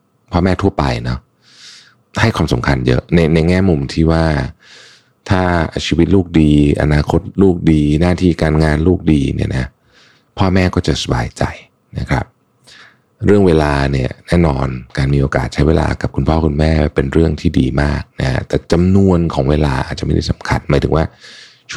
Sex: male